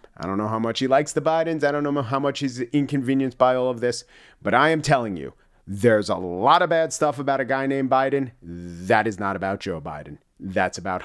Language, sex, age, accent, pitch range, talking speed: English, male, 40-59, American, 130-200 Hz, 240 wpm